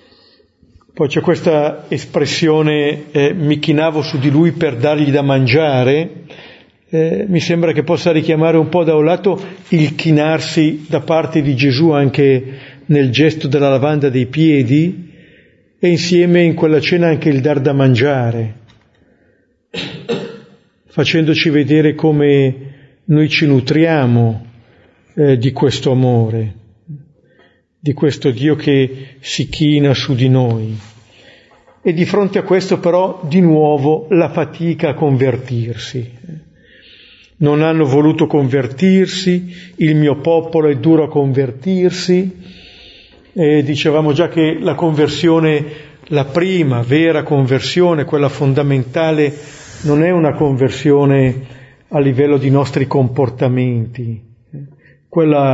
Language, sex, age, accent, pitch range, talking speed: Italian, male, 50-69, native, 135-165 Hz, 120 wpm